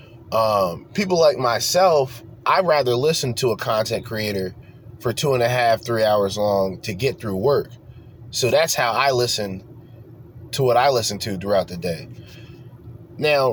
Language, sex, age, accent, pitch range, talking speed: English, male, 20-39, American, 110-125 Hz, 165 wpm